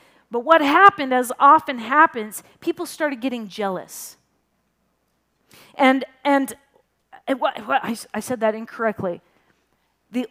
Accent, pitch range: American, 225-285 Hz